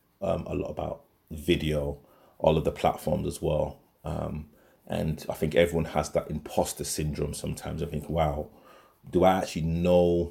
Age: 30-49